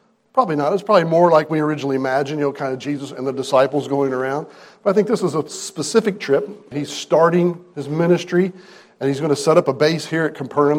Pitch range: 130-175 Hz